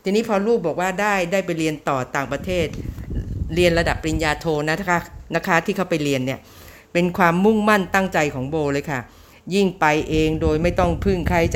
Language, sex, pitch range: Thai, female, 140-175 Hz